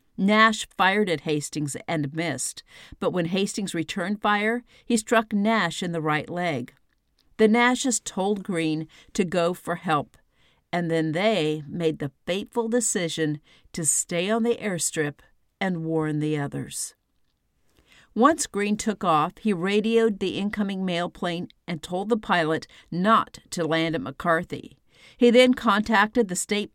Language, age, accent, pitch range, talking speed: English, 50-69, American, 160-215 Hz, 150 wpm